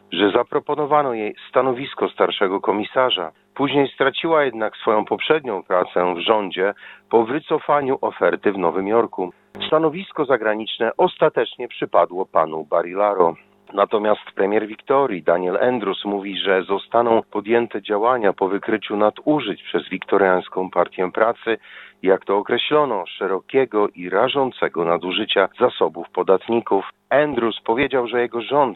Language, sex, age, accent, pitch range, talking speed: Polish, male, 40-59, native, 100-130 Hz, 120 wpm